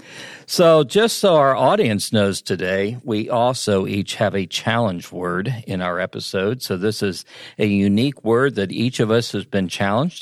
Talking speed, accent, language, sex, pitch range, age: 175 wpm, American, English, male, 100-130 Hz, 50-69